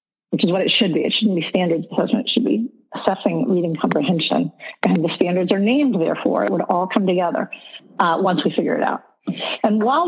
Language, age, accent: English, 50-69, American